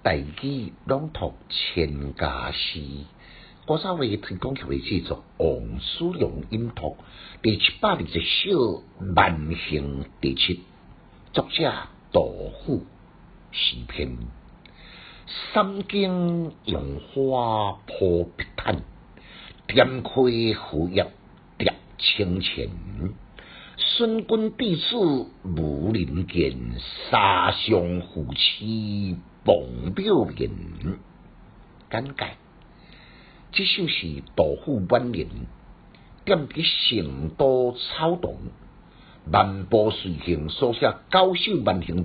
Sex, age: male, 60-79